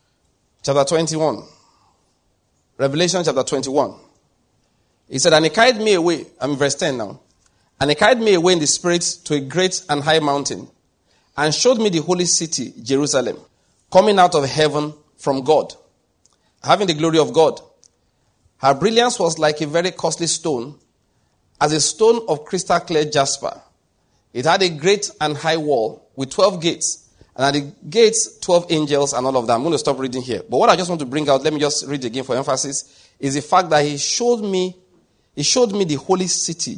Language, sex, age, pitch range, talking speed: English, male, 40-59, 145-185 Hz, 195 wpm